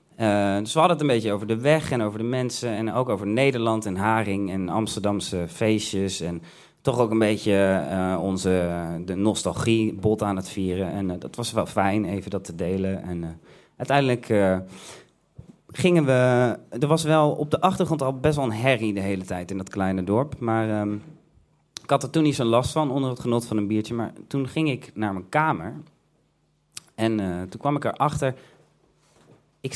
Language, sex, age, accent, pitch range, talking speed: Dutch, male, 30-49, Dutch, 95-130 Hz, 200 wpm